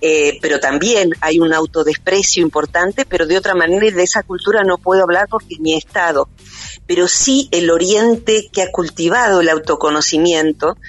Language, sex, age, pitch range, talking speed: Spanish, female, 40-59, 155-230 Hz, 170 wpm